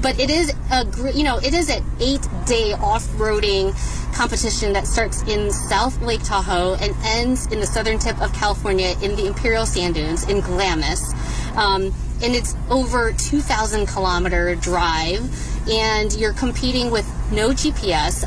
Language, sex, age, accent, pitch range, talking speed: English, female, 30-49, American, 175-225 Hz, 155 wpm